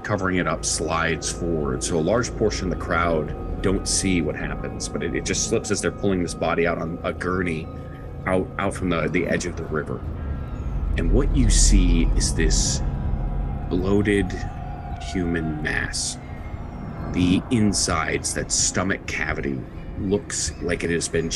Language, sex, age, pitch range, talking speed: English, male, 30-49, 80-95 Hz, 165 wpm